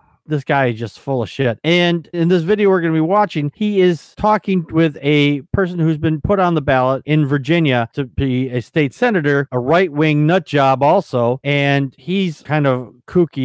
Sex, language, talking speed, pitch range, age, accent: male, English, 205 wpm, 130-165 Hz, 40-59, American